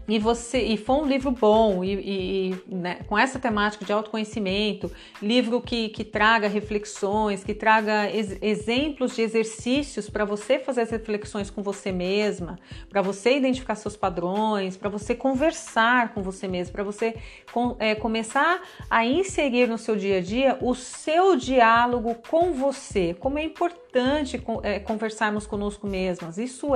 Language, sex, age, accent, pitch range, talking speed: Portuguese, female, 40-59, Brazilian, 205-250 Hz, 145 wpm